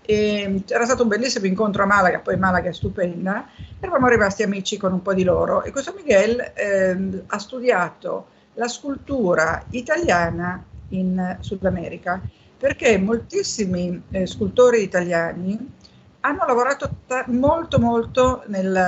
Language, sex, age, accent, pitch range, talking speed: Italian, female, 50-69, native, 185-245 Hz, 130 wpm